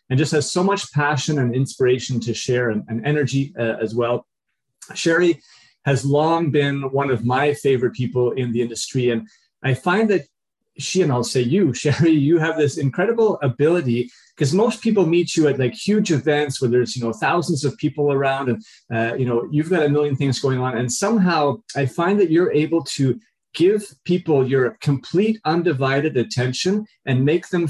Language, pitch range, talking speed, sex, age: English, 125-155 Hz, 190 wpm, male, 30-49